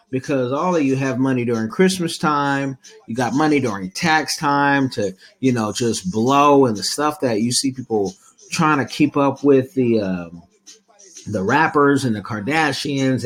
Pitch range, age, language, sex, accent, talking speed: 110-145 Hz, 30-49, English, male, American, 175 wpm